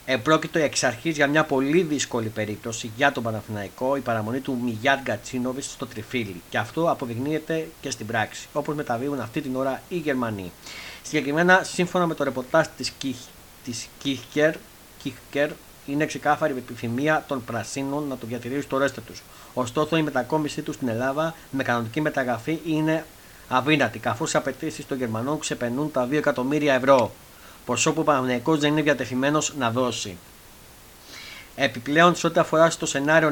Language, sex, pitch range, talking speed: Greek, male, 120-155 Hz, 155 wpm